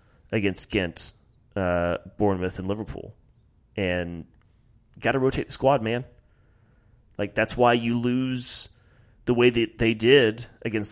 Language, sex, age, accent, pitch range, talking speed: English, male, 30-49, American, 100-120 Hz, 130 wpm